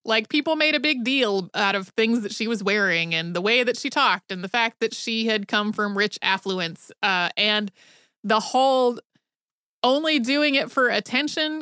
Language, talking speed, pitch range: English, 195 wpm, 200-255 Hz